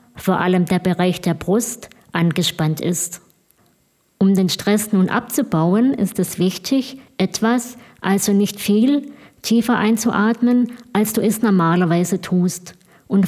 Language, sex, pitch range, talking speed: German, female, 180-225 Hz, 125 wpm